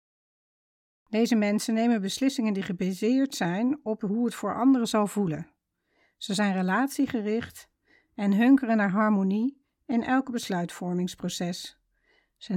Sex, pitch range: female, 185-240 Hz